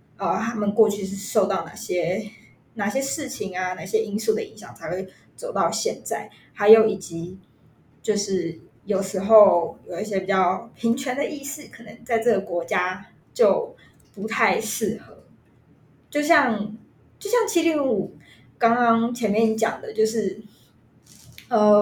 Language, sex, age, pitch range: Chinese, female, 20-39, 195-245 Hz